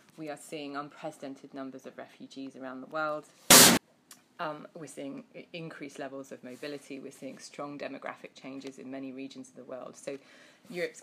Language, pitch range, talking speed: English, 135-155 Hz, 165 wpm